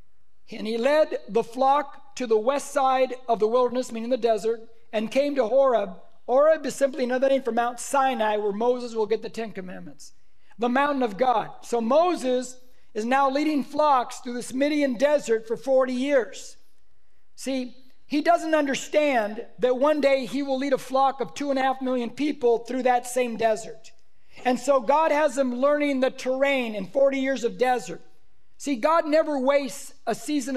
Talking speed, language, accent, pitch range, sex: 175 wpm, English, American, 245-285 Hz, male